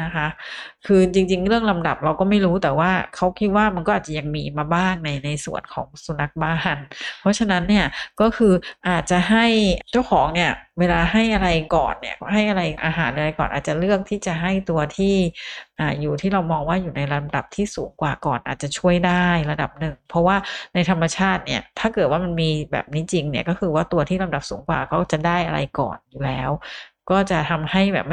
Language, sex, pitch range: Thai, female, 155-195 Hz